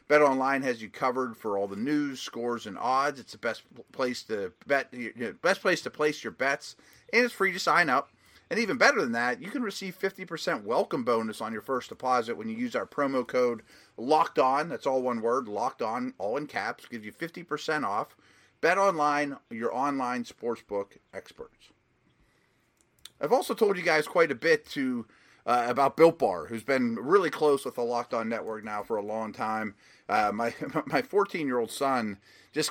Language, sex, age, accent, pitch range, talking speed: English, male, 30-49, American, 115-165 Hz, 200 wpm